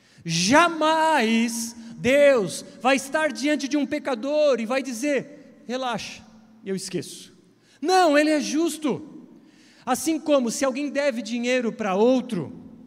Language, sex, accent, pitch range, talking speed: Portuguese, male, Brazilian, 200-275 Hz, 120 wpm